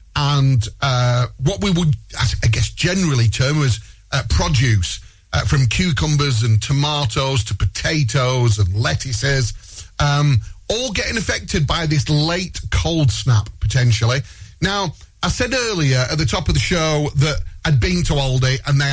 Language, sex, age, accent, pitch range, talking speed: English, male, 40-59, British, 105-160 Hz, 150 wpm